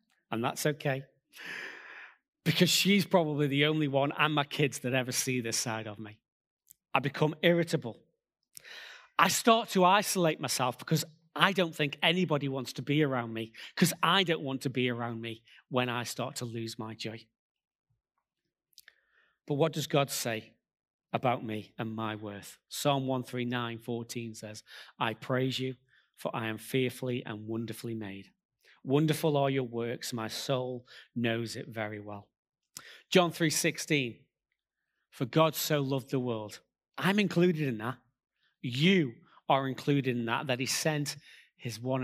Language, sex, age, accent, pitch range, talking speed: English, male, 30-49, British, 120-155 Hz, 155 wpm